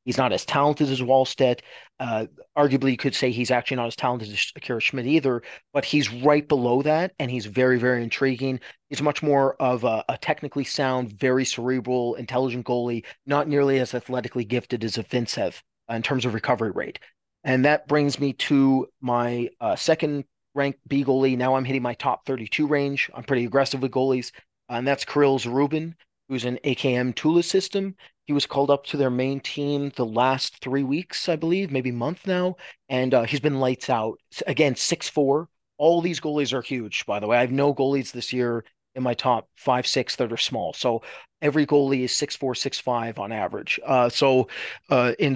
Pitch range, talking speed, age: 125-145 Hz, 195 wpm, 30-49